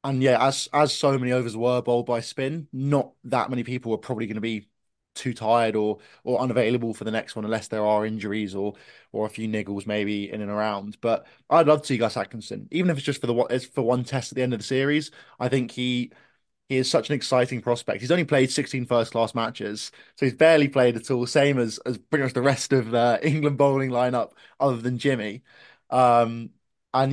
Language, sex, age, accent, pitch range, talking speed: English, male, 20-39, British, 115-135 Hz, 230 wpm